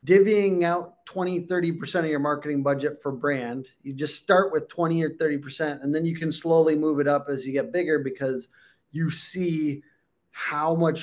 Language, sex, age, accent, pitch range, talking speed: English, male, 20-39, American, 140-175 Hz, 195 wpm